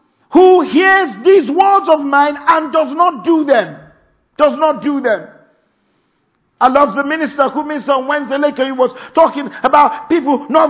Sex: male